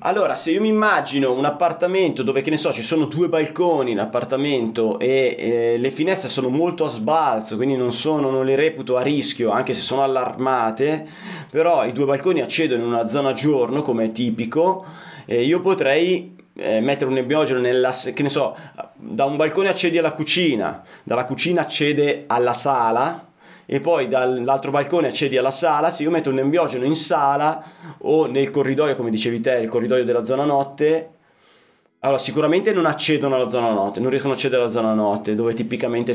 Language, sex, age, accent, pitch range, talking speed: Italian, male, 30-49, native, 120-155 Hz, 185 wpm